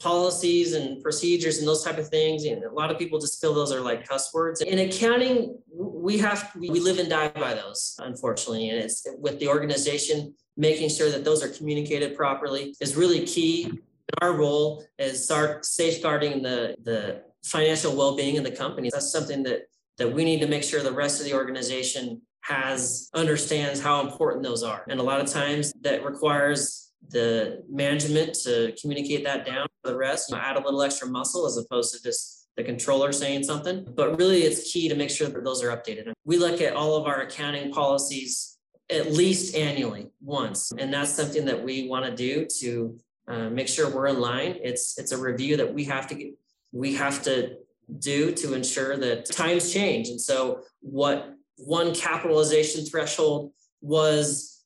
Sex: male